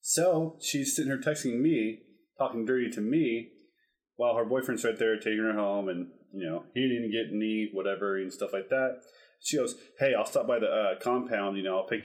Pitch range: 110-155 Hz